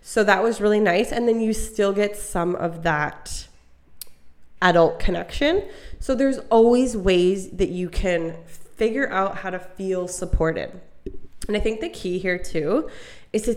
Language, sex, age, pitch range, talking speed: English, female, 20-39, 175-210 Hz, 165 wpm